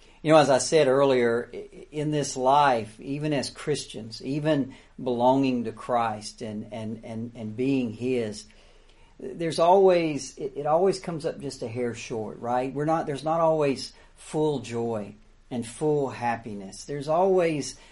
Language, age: English, 50-69